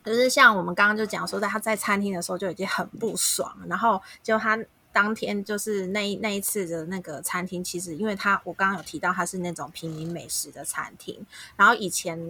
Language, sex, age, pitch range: Chinese, female, 20-39, 170-205 Hz